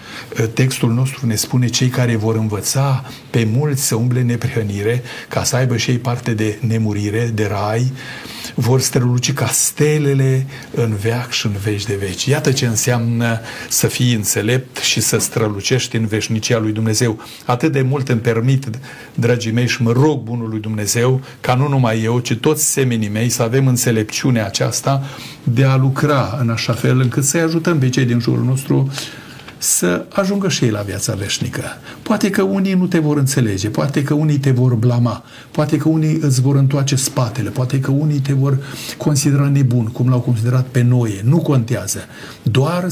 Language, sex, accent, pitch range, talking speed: Romanian, male, native, 115-145 Hz, 180 wpm